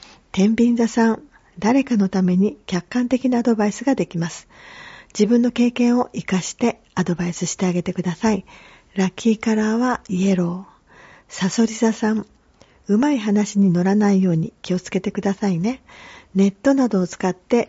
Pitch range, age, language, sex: 180-225 Hz, 40-59, Japanese, female